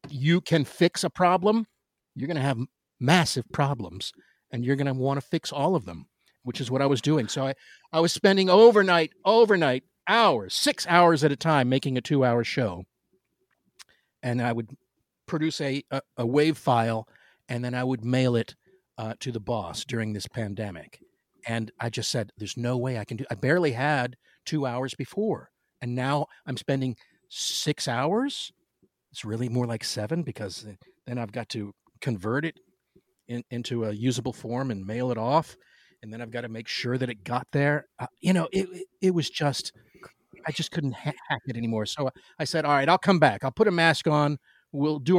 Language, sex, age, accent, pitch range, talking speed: English, male, 50-69, American, 120-165 Hz, 195 wpm